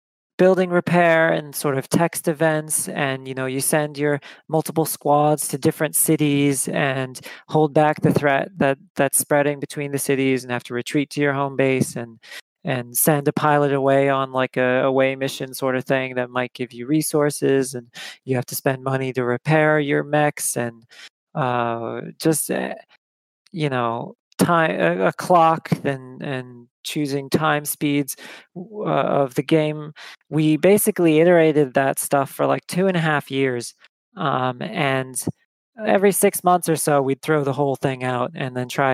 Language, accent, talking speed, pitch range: English, American, 175 wpm, 130-160 Hz